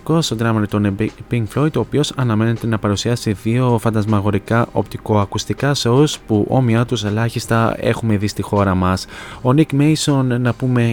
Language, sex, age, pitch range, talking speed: Greek, male, 20-39, 105-125 Hz, 155 wpm